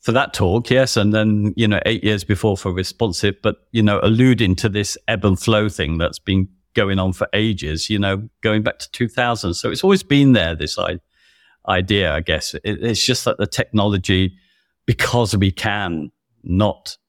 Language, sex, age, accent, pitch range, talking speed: English, male, 50-69, British, 85-110 Hz, 190 wpm